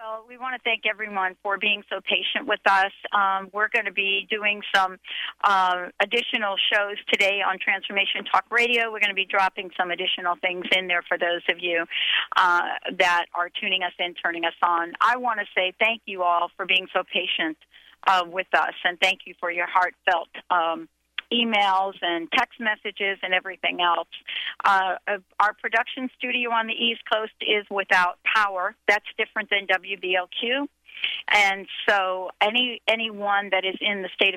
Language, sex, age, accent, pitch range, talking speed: English, female, 40-59, American, 175-215 Hz, 180 wpm